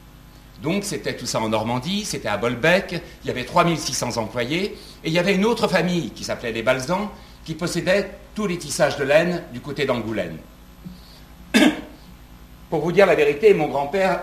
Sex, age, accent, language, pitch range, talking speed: male, 60-79, French, French, 110-165 Hz, 175 wpm